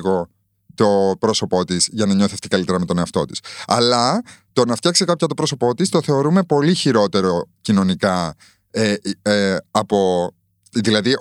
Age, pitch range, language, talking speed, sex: 30-49, 95-145 Hz, Greek, 140 wpm, male